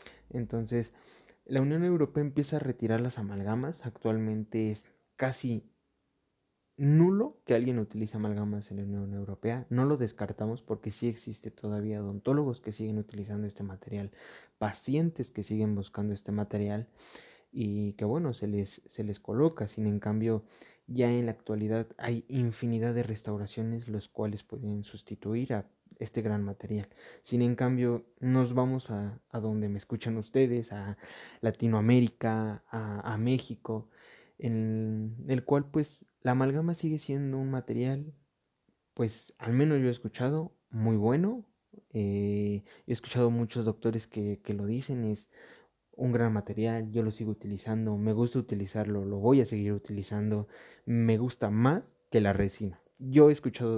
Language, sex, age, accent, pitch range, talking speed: Spanish, male, 20-39, Mexican, 105-125 Hz, 150 wpm